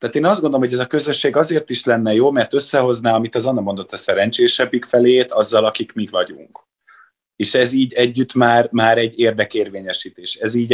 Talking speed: 195 wpm